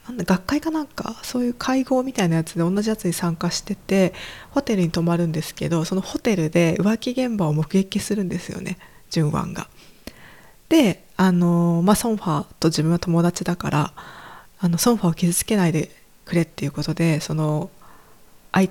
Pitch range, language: 165-210 Hz, Japanese